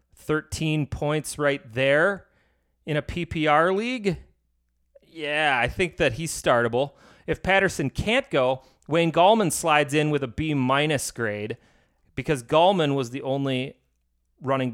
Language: English